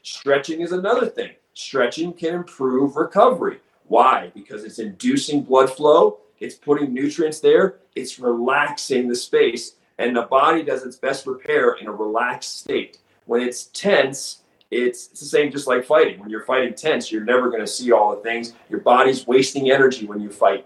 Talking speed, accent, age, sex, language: 180 wpm, American, 40-59, male, English